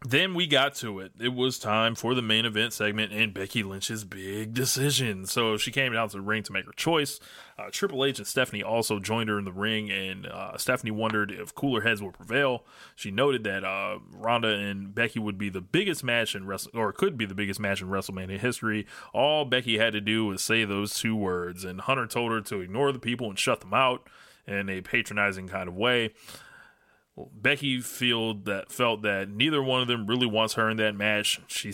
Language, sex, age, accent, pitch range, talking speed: English, male, 20-39, American, 100-125 Hz, 220 wpm